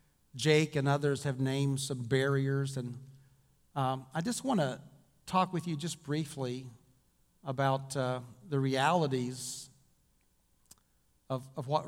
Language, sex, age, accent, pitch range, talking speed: English, male, 50-69, American, 130-150 Hz, 125 wpm